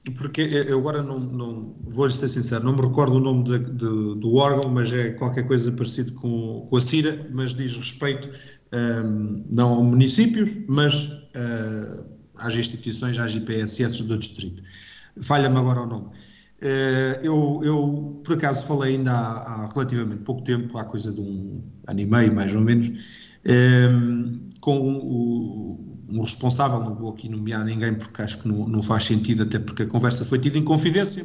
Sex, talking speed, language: male, 175 wpm, Portuguese